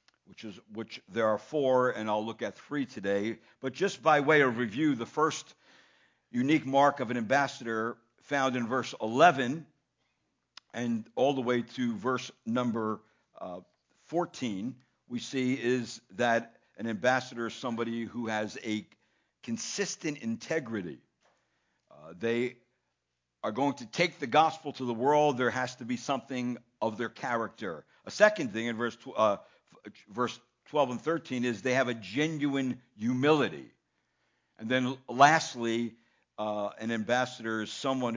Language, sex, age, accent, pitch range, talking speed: English, male, 60-79, American, 115-150 Hz, 150 wpm